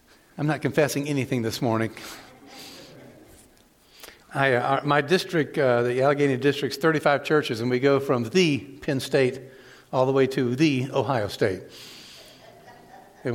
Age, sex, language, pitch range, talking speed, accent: 60-79, male, English, 130-175 Hz, 145 wpm, American